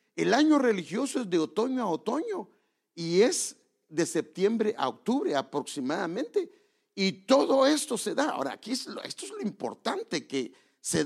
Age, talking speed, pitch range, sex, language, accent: 50-69, 165 wpm, 170-270 Hz, male, English, Mexican